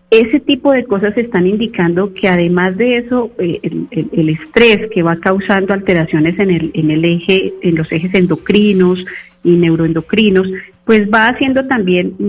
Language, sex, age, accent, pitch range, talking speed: Spanish, female, 40-59, Colombian, 175-220 Hz, 140 wpm